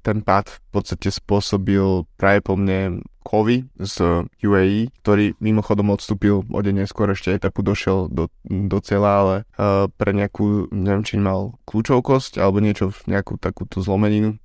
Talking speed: 155 wpm